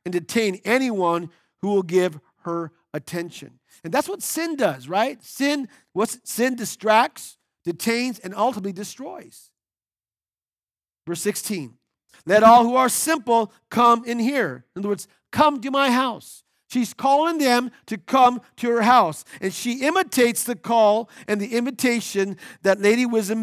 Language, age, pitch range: English, 50-69, 185-245 Hz